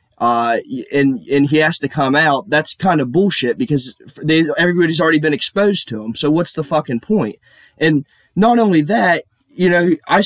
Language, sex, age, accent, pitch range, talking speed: English, male, 20-39, American, 130-165 Hz, 185 wpm